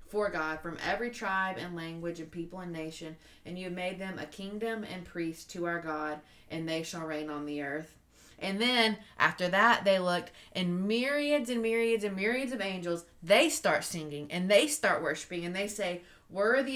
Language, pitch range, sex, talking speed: English, 160-195 Hz, female, 195 wpm